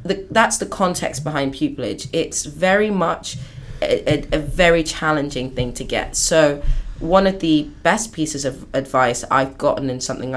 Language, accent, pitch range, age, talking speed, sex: English, British, 130-160 Hz, 20-39, 160 wpm, female